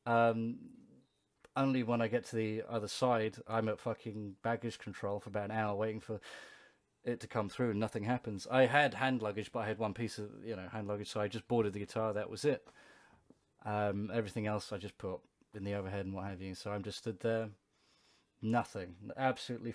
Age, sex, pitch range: 30-49, male, 105-130 Hz